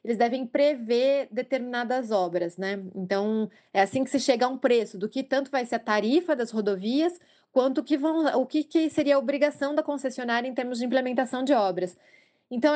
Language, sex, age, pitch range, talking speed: Portuguese, female, 20-39, 210-275 Hz, 200 wpm